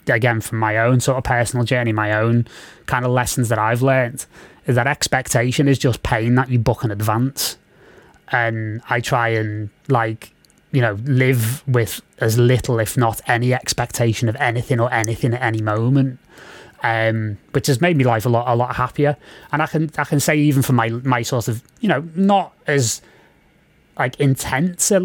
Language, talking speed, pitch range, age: English, 190 wpm, 115-140 Hz, 20-39